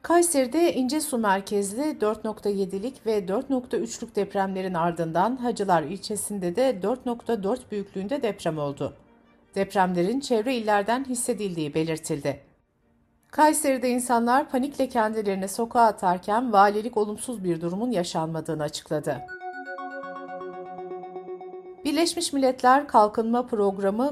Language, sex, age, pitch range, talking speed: Turkish, female, 60-79, 175-245 Hz, 90 wpm